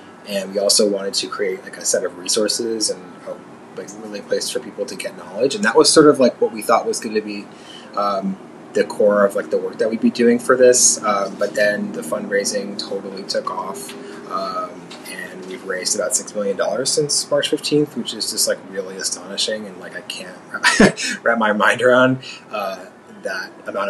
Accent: American